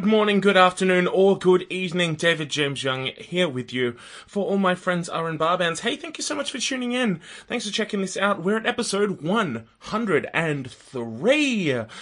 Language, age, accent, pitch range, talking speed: English, 20-39, Australian, 140-195 Hz, 180 wpm